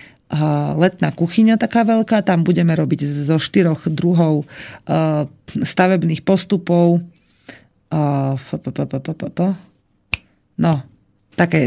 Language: Slovak